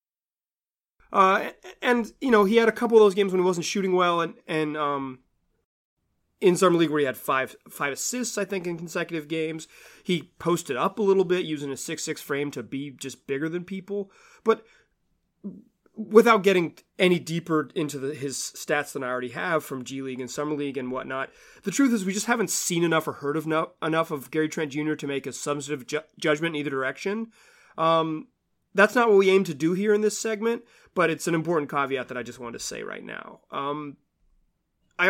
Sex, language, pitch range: male, English, 150-200 Hz